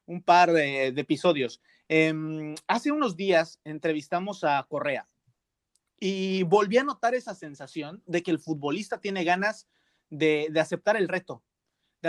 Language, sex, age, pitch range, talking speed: Spanish, male, 30-49, 165-200 Hz, 150 wpm